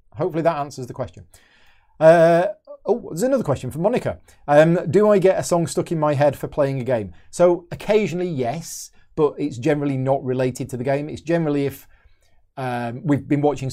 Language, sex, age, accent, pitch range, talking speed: English, male, 30-49, British, 125-155 Hz, 190 wpm